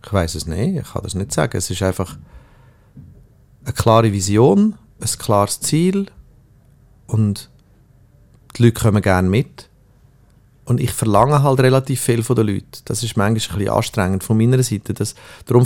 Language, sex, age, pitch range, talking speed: German, male, 40-59, 110-125 Hz, 170 wpm